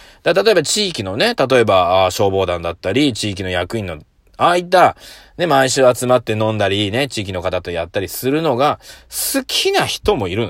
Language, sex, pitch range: Japanese, male, 95-145 Hz